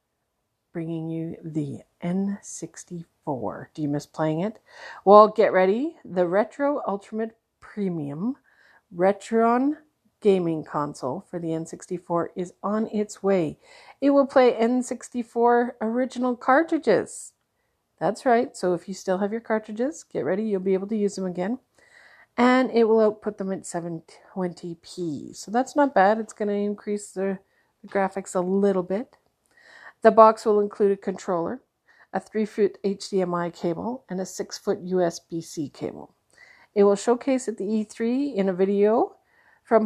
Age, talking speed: 50-69, 145 wpm